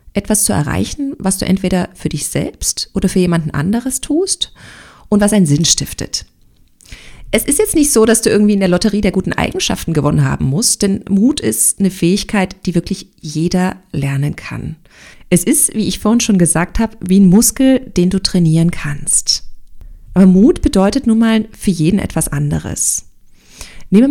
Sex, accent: female, German